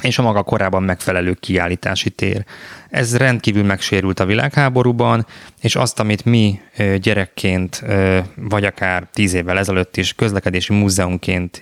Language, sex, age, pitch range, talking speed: Hungarian, male, 20-39, 95-115 Hz, 130 wpm